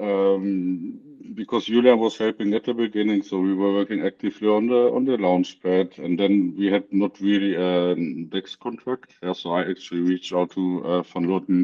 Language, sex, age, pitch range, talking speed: English, male, 50-69, 90-105 Hz, 195 wpm